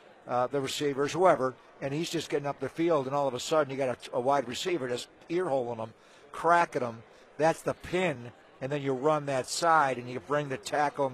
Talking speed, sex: 230 wpm, male